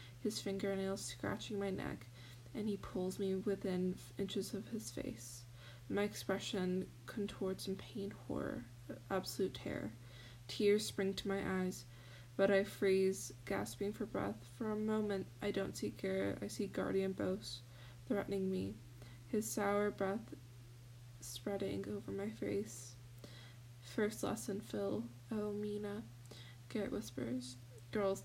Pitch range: 120-200 Hz